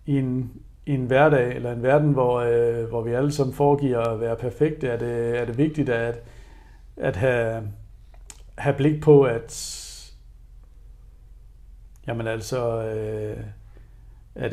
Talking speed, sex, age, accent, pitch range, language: 140 wpm, male, 60-79, native, 115-145 Hz, Danish